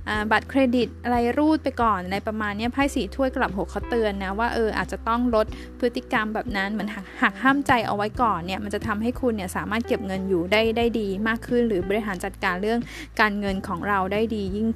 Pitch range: 210-255 Hz